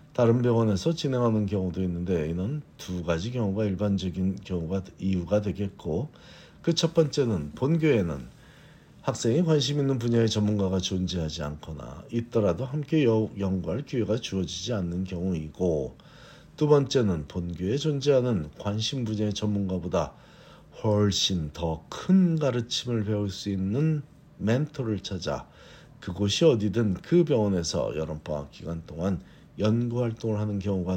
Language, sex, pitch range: Korean, male, 90-120 Hz